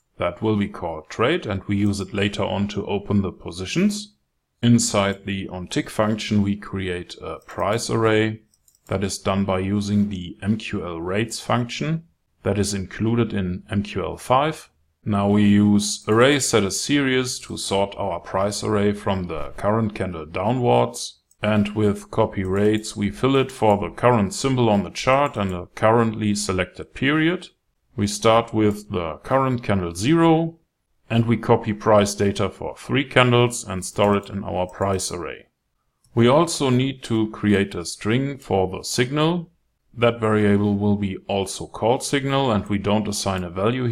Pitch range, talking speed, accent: 95-120 Hz, 160 wpm, German